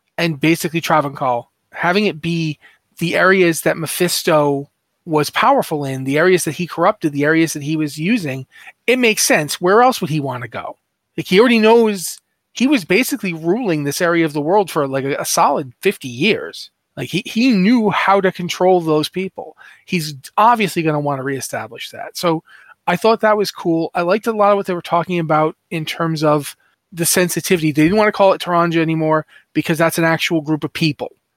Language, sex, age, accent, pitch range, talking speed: English, male, 30-49, American, 150-190 Hz, 205 wpm